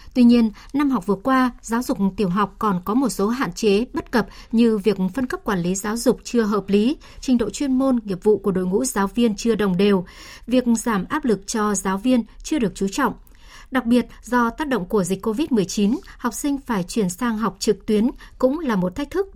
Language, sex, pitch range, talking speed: Vietnamese, male, 205-245 Hz, 230 wpm